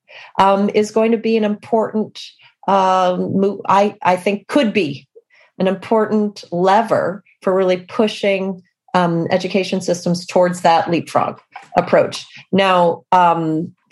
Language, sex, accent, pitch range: English, female, American, 180-220 Hz